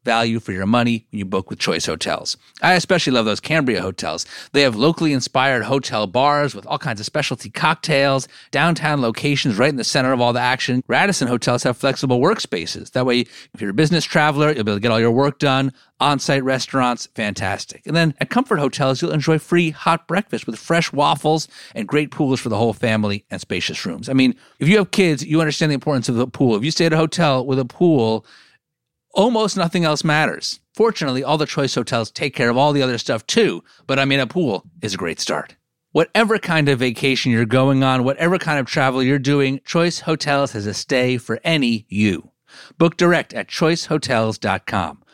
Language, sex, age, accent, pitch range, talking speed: English, male, 40-59, American, 125-165 Hz, 210 wpm